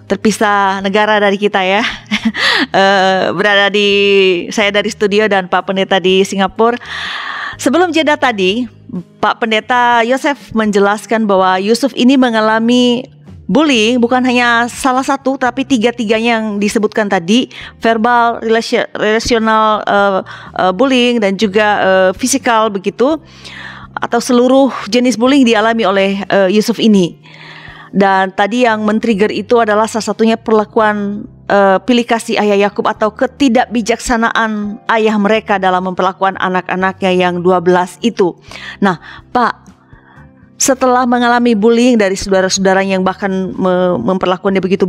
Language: Indonesian